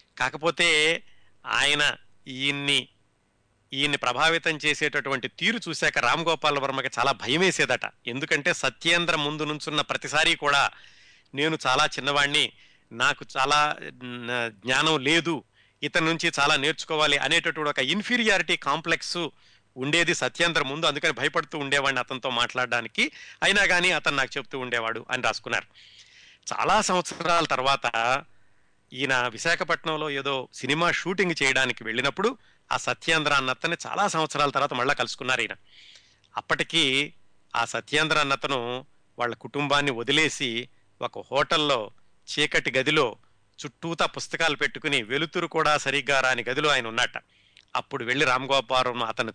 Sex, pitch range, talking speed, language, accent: male, 130-160 Hz, 115 wpm, Telugu, native